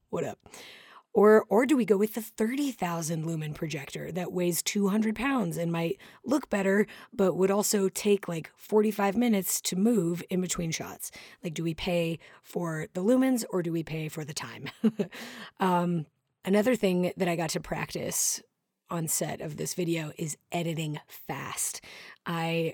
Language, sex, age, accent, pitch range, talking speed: English, female, 30-49, American, 160-195 Hz, 165 wpm